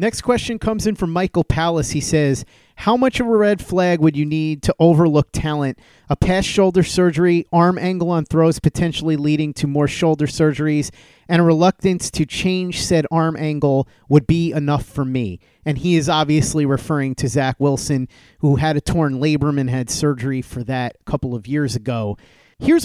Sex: male